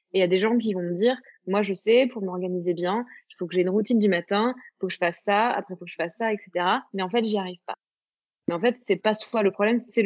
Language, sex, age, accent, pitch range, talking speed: French, female, 20-39, French, 190-240 Hz, 305 wpm